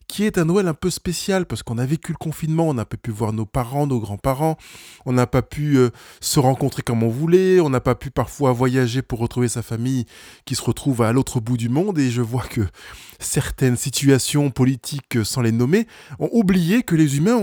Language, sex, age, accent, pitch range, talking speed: French, male, 20-39, French, 120-170 Hz, 220 wpm